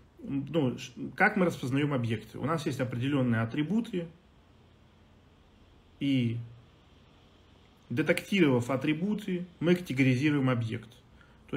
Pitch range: 115-155 Hz